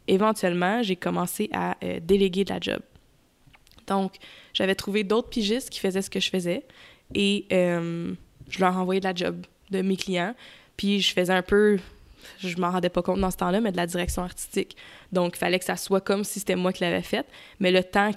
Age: 20-39